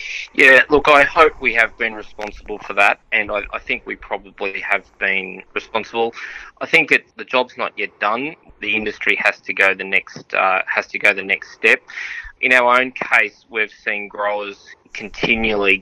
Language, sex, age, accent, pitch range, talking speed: English, male, 20-39, Australian, 100-115 Hz, 185 wpm